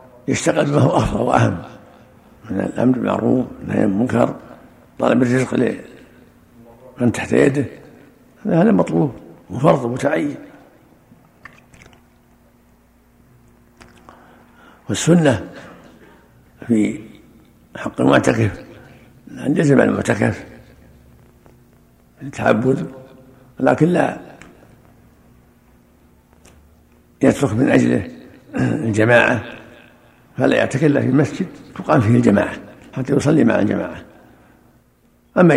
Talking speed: 75 wpm